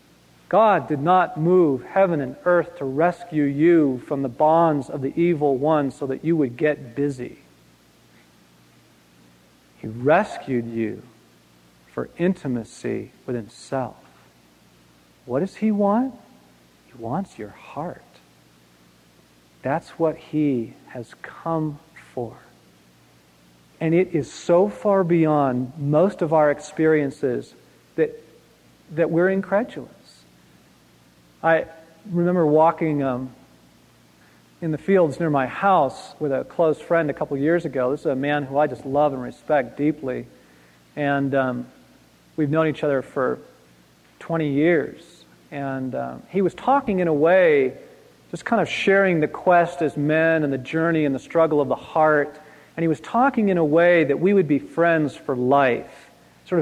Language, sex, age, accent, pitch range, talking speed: English, male, 40-59, American, 125-170 Hz, 145 wpm